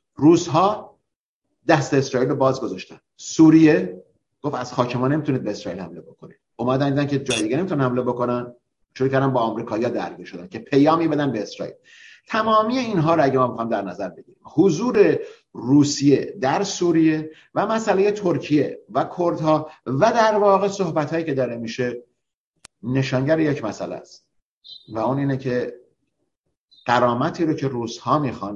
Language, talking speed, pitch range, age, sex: Persian, 150 wpm, 115-155 Hz, 50-69, male